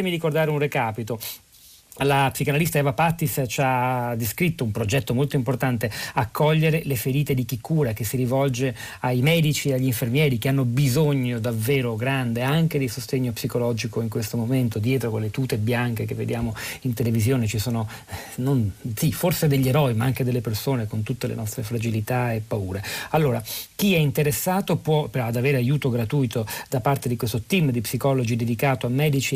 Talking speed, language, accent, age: 175 wpm, Italian, native, 40-59